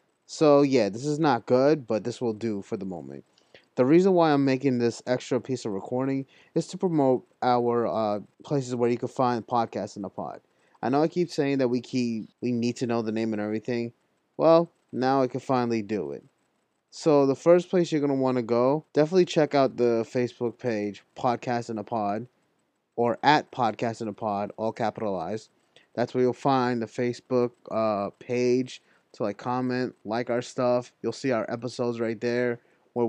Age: 20-39